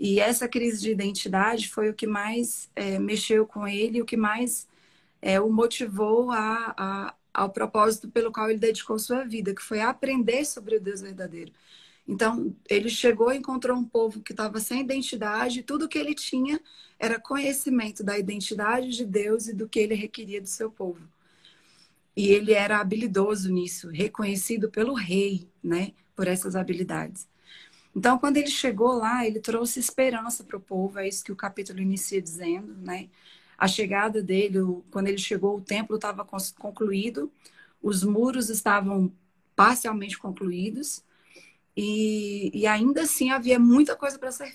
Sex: female